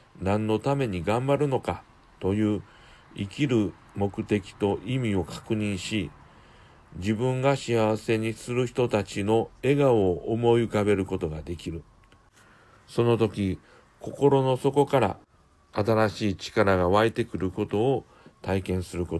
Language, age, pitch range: Japanese, 60-79, 90-115 Hz